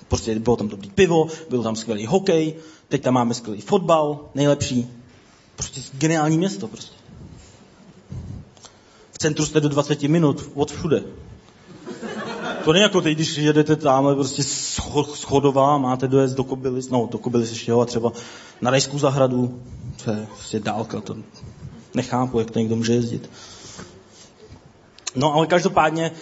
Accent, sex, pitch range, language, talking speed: native, male, 120-155 Hz, Czech, 145 wpm